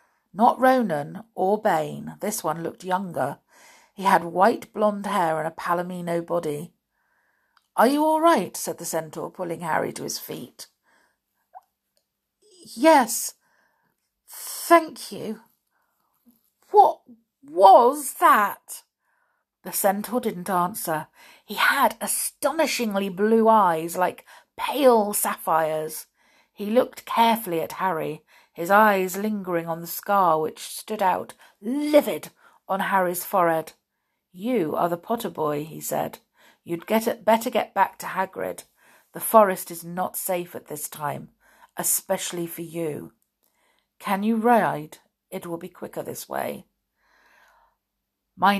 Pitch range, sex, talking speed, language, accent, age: 165-225 Hz, female, 125 wpm, English, British, 50-69